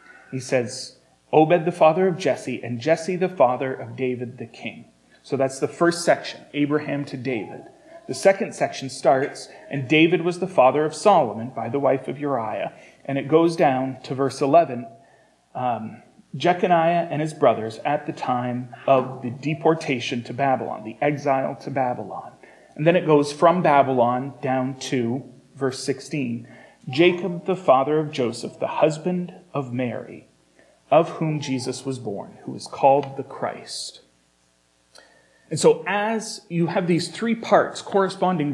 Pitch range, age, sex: 130-175 Hz, 30-49, male